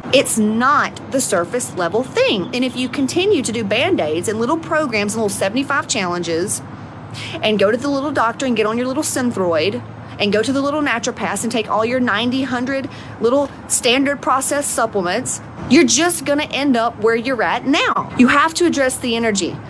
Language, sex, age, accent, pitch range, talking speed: English, female, 30-49, American, 195-270 Hz, 190 wpm